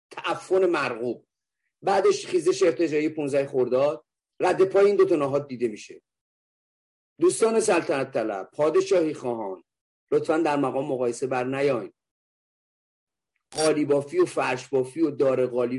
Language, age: Persian, 40-59